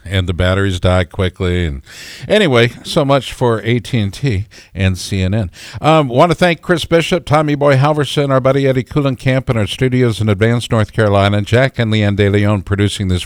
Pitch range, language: 95-130 Hz, English